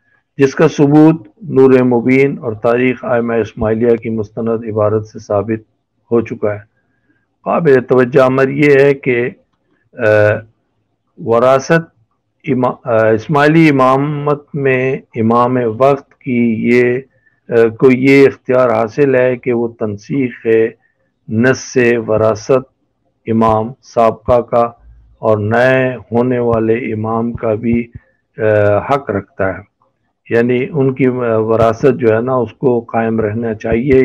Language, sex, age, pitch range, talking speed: Urdu, male, 50-69, 110-130 Hz, 115 wpm